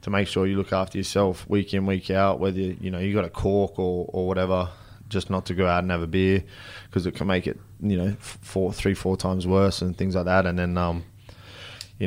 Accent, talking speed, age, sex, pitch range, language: Australian, 250 wpm, 20-39, male, 95-105 Hz, English